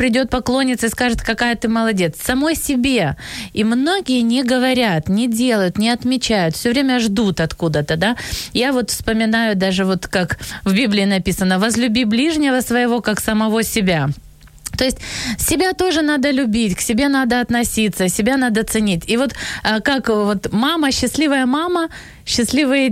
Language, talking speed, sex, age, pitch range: Ukrainian, 150 wpm, female, 20-39, 215-260 Hz